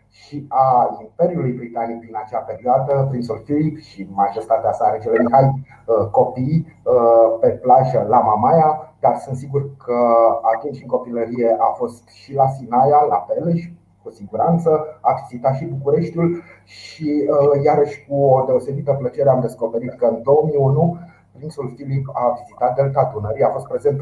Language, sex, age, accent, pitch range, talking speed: Romanian, male, 30-49, native, 125-155 Hz, 145 wpm